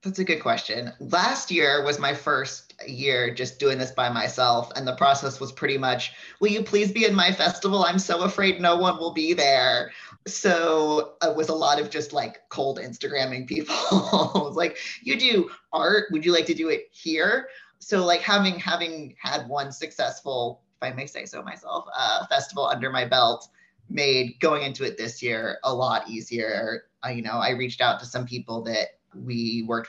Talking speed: 195 wpm